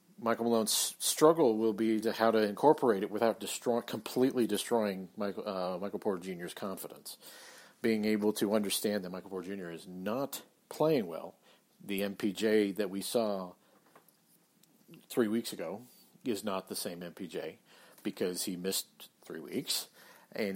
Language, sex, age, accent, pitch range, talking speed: English, male, 50-69, American, 100-120 Hz, 150 wpm